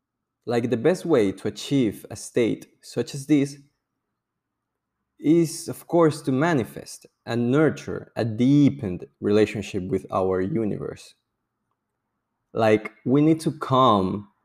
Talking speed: 120 wpm